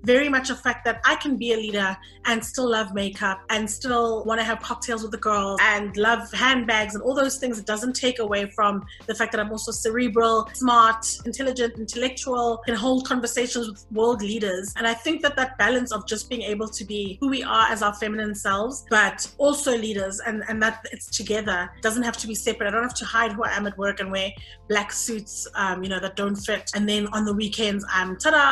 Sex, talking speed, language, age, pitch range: female, 230 wpm, English, 20-39, 210-240 Hz